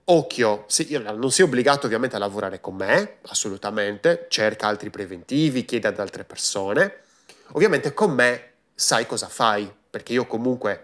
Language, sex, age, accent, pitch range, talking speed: Italian, male, 30-49, native, 110-170 Hz, 155 wpm